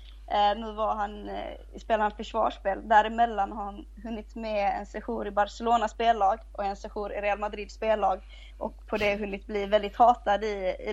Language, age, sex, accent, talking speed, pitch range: Swedish, 20-39, female, native, 160 wpm, 195-230 Hz